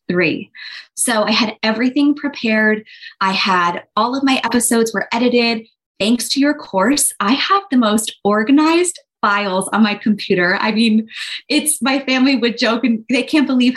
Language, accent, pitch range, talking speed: English, American, 210-275 Hz, 165 wpm